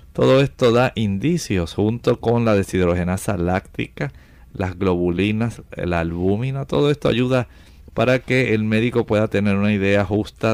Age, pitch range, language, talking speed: 50-69, 95-125 Hz, Spanish, 140 wpm